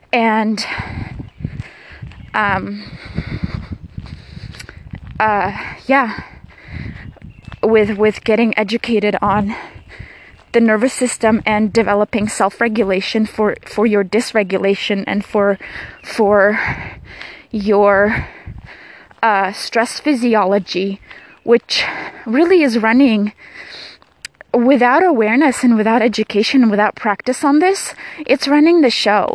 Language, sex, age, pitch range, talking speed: English, female, 20-39, 210-255 Hz, 90 wpm